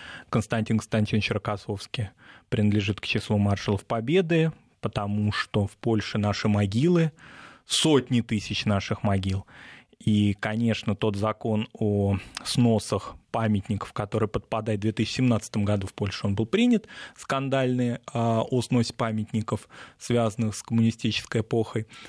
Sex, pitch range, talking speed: male, 110-140 Hz, 110 wpm